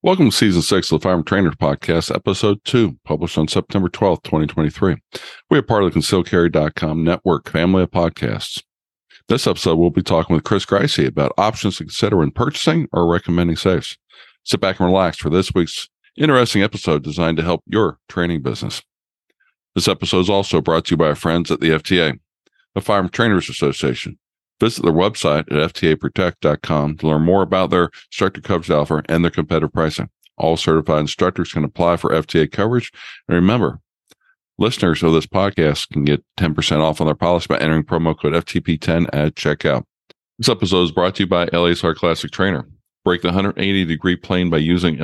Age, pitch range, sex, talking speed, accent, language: 50-69, 80-95 Hz, male, 180 wpm, American, English